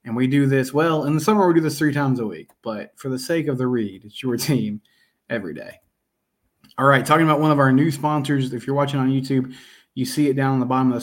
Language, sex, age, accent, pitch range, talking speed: English, male, 20-39, American, 125-150 Hz, 270 wpm